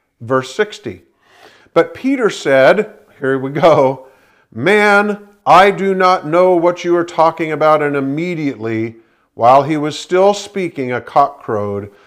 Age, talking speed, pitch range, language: 50-69, 140 wpm, 130-175 Hz, English